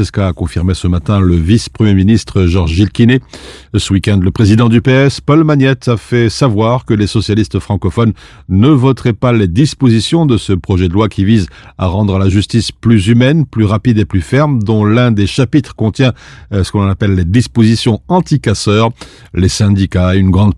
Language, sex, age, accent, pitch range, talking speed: French, male, 50-69, French, 100-125 Hz, 185 wpm